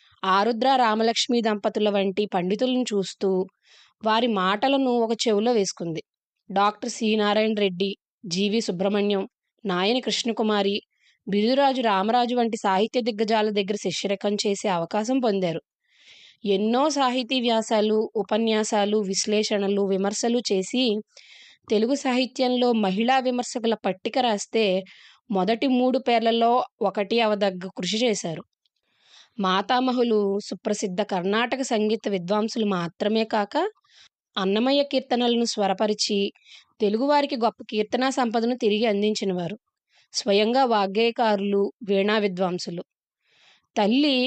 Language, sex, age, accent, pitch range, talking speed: Telugu, female, 20-39, native, 200-245 Hz, 95 wpm